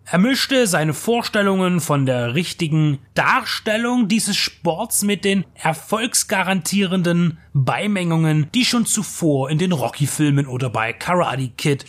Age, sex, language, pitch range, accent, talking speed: 30-49, male, German, 145-200 Hz, German, 120 wpm